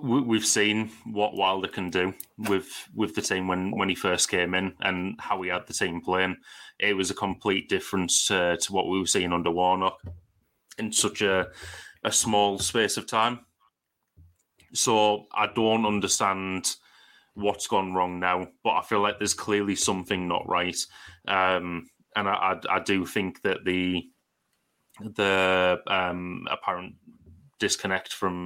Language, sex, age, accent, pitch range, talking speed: English, male, 30-49, British, 90-100 Hz, 160 wpm